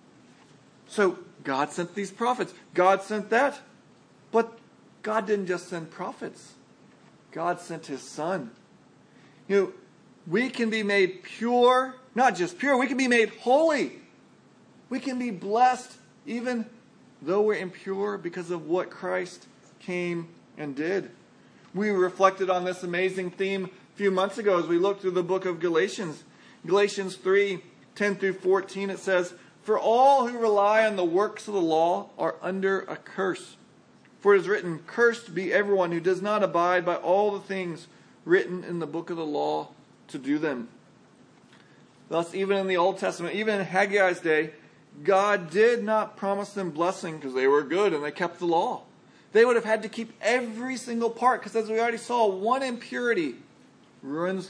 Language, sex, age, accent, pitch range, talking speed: English, male, 40-59, American, 180-225 Hz, 170 wpm